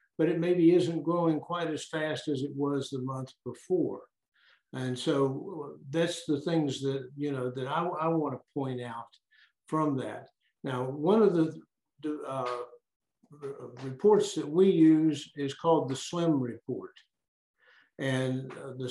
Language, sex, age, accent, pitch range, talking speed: English, male, 60-79, American, 135-165 Hz, 150 wpm